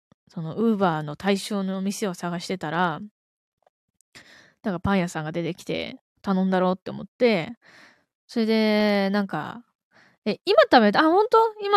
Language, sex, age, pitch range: Japanese, female, 20-39, 185-260 Hz